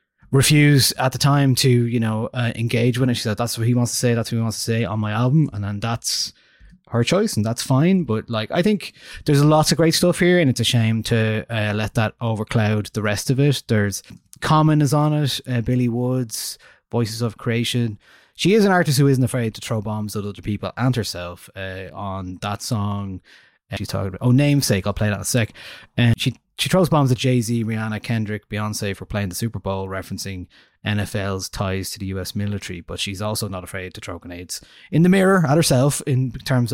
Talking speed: 225 wpm